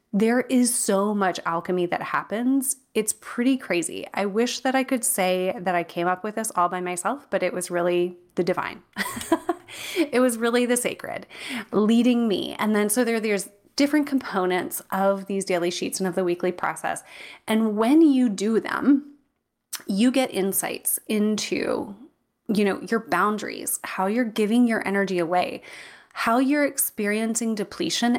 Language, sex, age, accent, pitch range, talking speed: English, female, 20-39, American, 185-245 Hz, 165 wpm